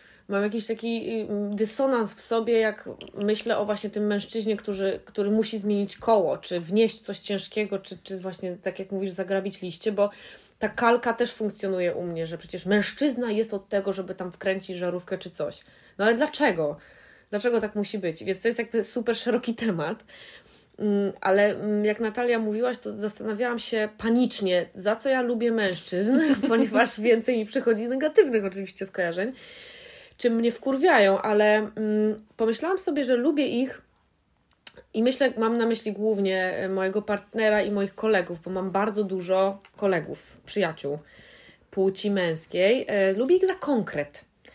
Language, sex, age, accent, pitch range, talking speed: Polish, female, 20-39, native, 195-235 Hz, 155 wpm